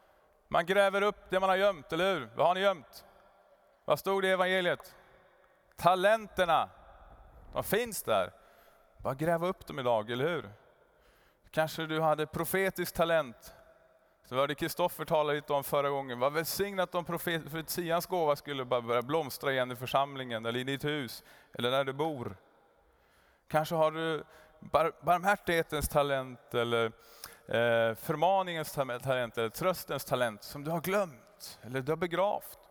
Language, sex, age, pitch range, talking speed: Swedish, male, 30-49, 120-170 Hz, 150 wpm